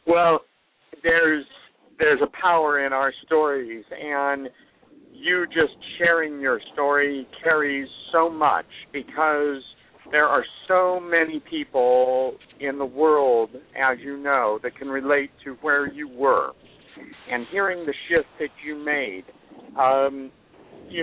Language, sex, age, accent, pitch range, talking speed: English, male, 60-79, American, 140-170 Hz, 130 wpm